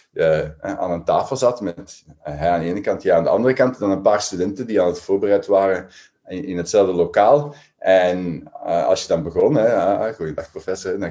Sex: male